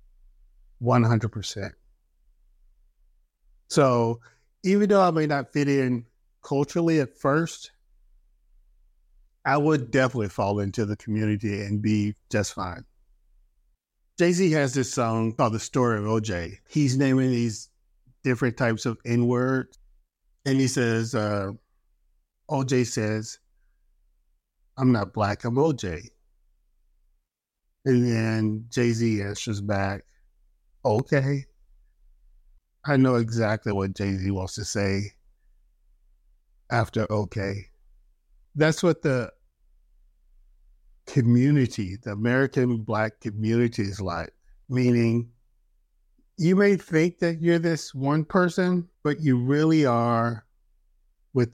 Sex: male